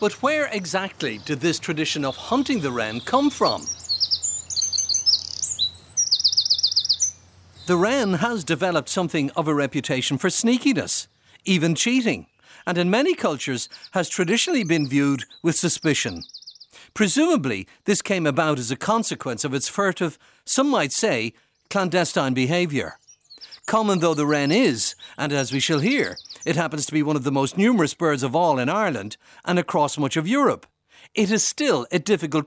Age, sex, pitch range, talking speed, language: 50-69, male, 135-195 Hz, 155 wpm, English